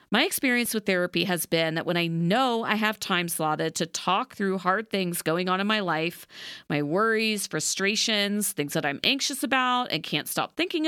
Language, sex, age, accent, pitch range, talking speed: English, female, 40-59, American, 170-225 Hz, 200 wpm